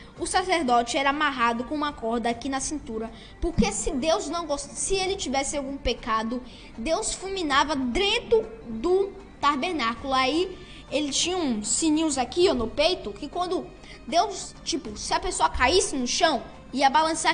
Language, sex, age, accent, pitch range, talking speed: Portuguese, female, 10-29, Brazilian, 255-345 Hz, 165 wpm